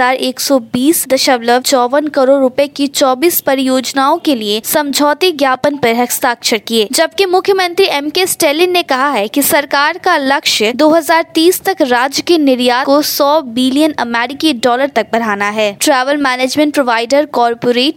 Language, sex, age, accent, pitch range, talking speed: Hindi, female, 20-39, native, 245-310 Hz, 135 wpm